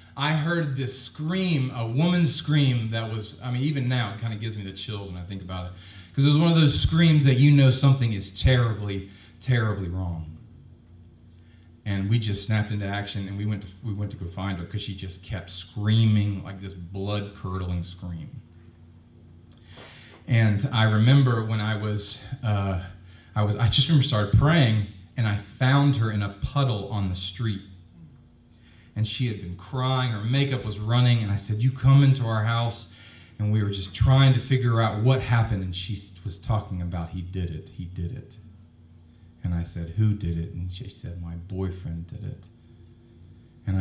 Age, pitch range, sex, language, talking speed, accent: 30-49, 90-120 Hz, male, English, 195 wpm, American